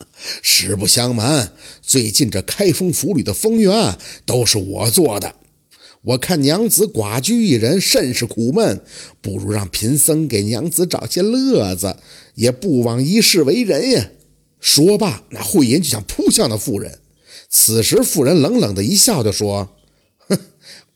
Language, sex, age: Chinese, male, 50-69